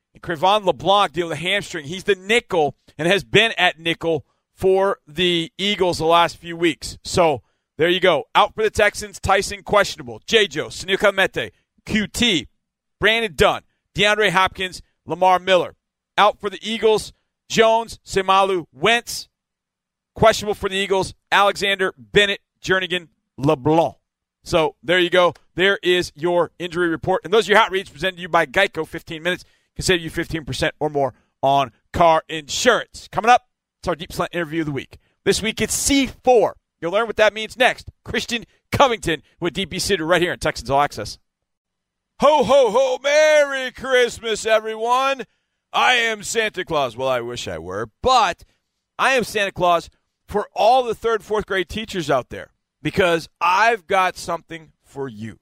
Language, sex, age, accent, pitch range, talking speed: English, male, 40-59, American, 165-215 Hz, 165 wpm